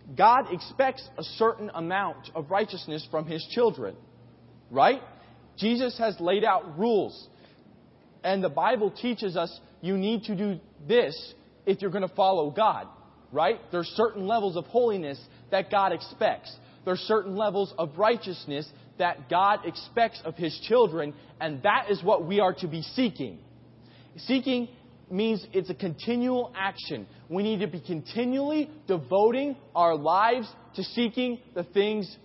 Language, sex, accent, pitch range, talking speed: English, male, American, 155-225 Hz, 145 wpm